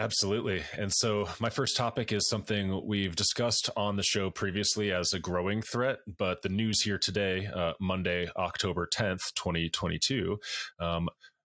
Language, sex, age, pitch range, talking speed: English, male, 30-49, 90-105 Hz, 145 wpm